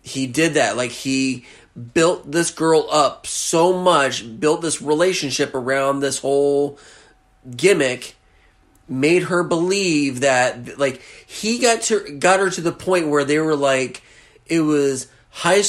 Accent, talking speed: American, 145 wpm